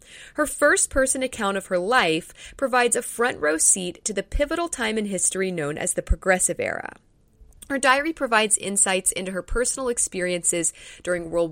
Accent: American